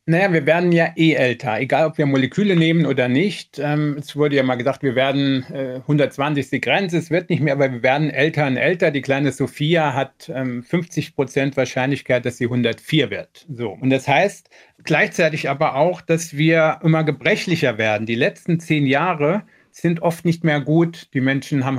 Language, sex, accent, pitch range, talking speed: German, male, German, 135-165 Hz, 195 wpm